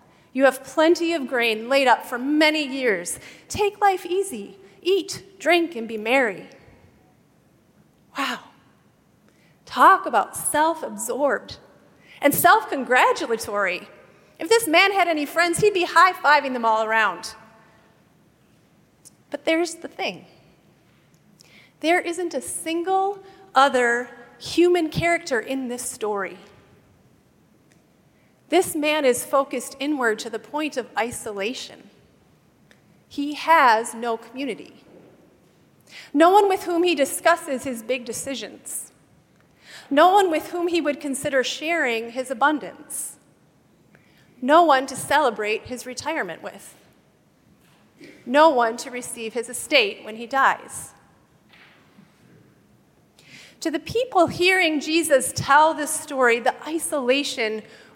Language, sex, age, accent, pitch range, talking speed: English, female, 30-49, American, 245-335 Hz, 115 wpm